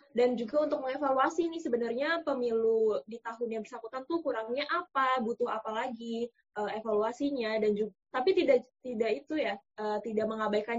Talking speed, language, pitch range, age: 150 wpm, Indonesian, 220-270 Hz, 20-39